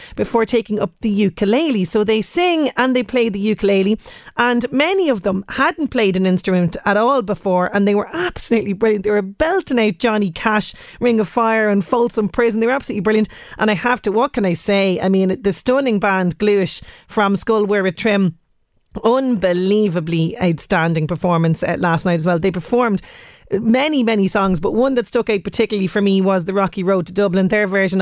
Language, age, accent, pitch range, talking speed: English, 30-49, Irish, 190-225 Hz, 200 wpm